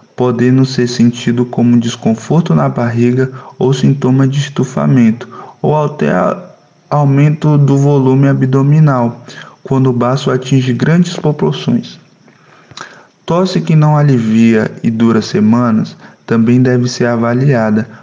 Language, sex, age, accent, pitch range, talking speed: Portuguese, male, 20-39, Brazilian, 115-135 Hz, 115 wpm